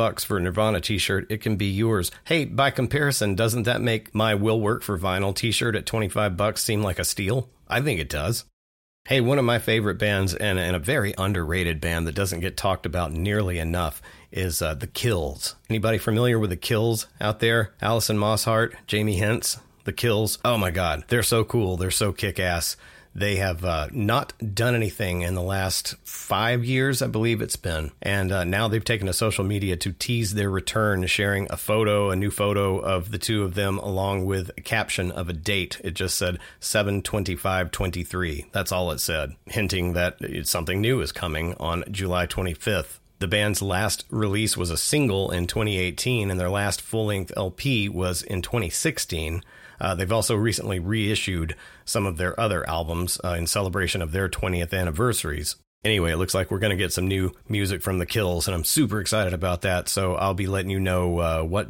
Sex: male